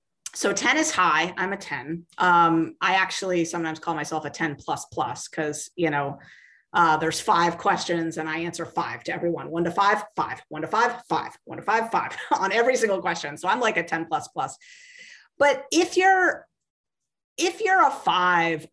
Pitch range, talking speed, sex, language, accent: 160-205 Hz, 190 wpm, female, English, American